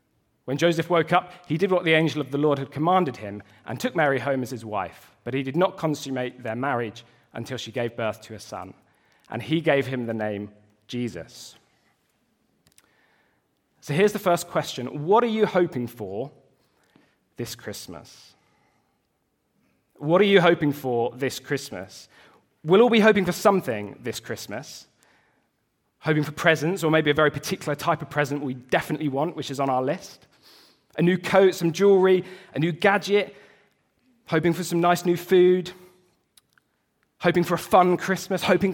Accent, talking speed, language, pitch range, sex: British, 170 wpm, English, 130-180 Hz, male